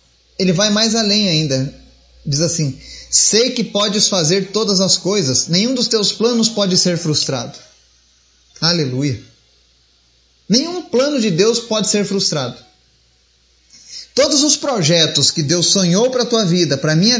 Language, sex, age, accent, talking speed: Portuguese, male, 30-49, Brazilian, 145 wpm